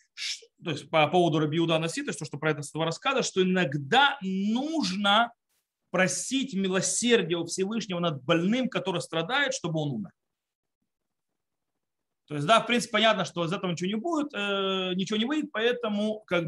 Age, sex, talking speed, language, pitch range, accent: 30-49, male, 155 wpm, Russian, 170-230 Hz, native